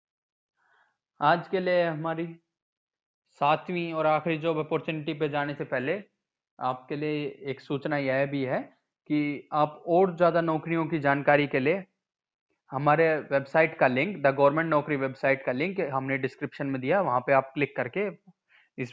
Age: 20-39